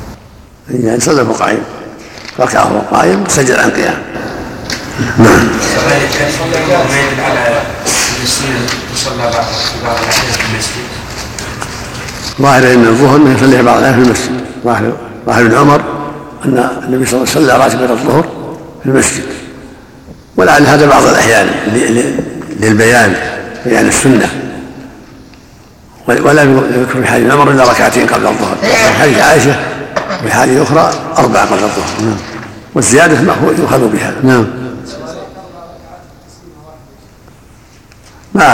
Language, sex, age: Arabic, male, 60-79